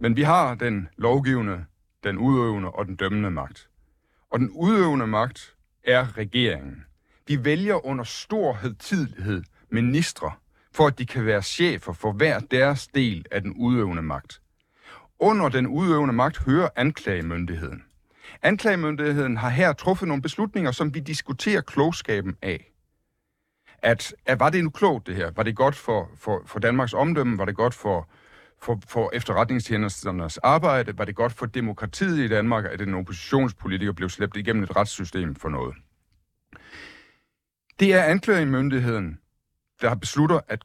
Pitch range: 100-145 Hz